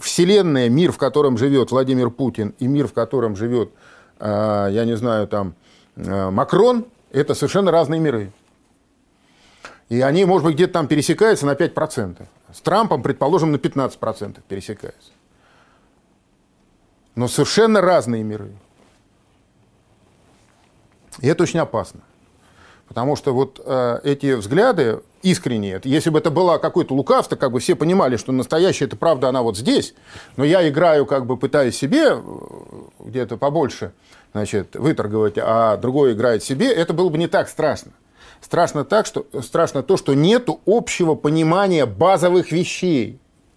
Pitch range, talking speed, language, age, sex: 120-165 Hz, 135 wpm, Russian, 40-59, male